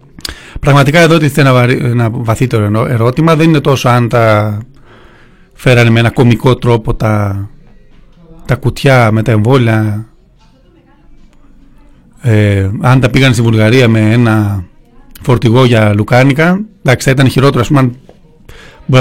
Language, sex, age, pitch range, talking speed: Greek, male, 40-59, 125-165 Hz, 125 wpm